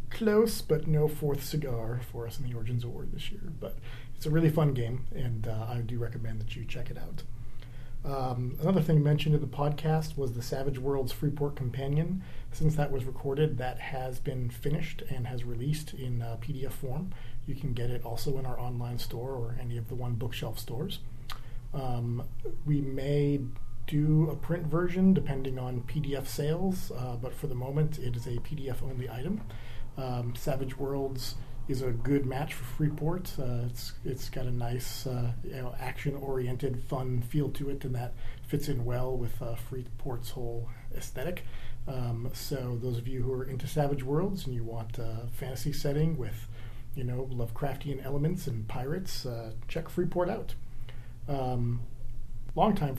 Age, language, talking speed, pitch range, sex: 40-59, English, 180 wpm, 120-145 Hz, male